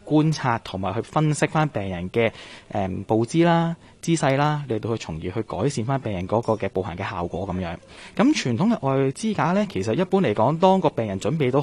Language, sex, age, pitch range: Chinese, male, 20-39, 105-150 Hz